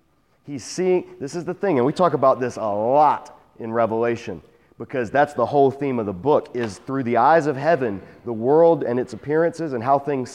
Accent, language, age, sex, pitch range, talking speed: American, English, 40-59, male, 120-150 Hz, 215 wpm